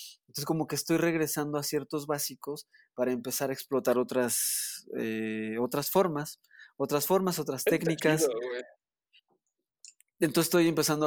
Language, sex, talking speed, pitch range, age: Spanish, male, 125 wpm, 130-160 Hz, 20-39